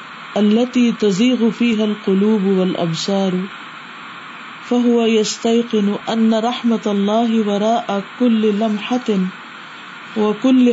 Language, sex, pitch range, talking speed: Urdu, female, 200-235 Hz, 80 wpm